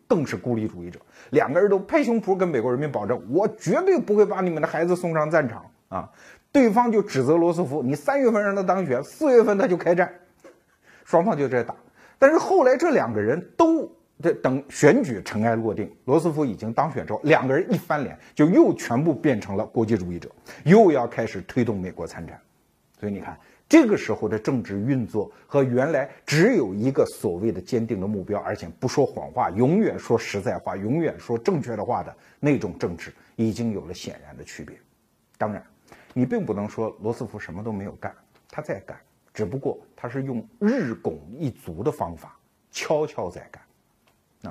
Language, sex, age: Chinese, male, 50-69